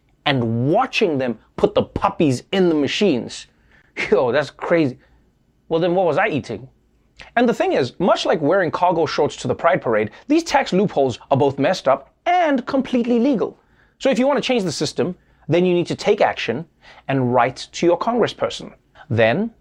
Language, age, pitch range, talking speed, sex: English, 30-49, 145-230 Hz, 185 wpm, male